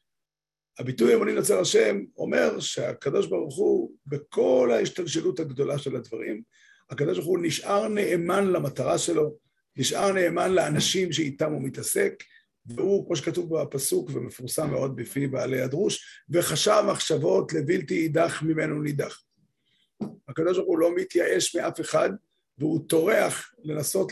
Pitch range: 145-210 Hz